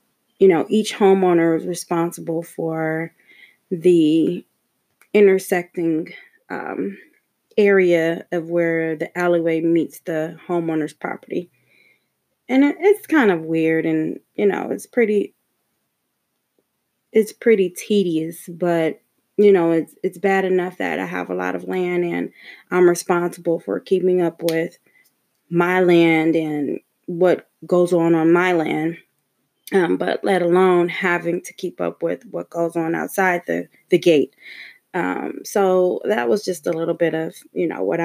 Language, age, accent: English, 20-39, American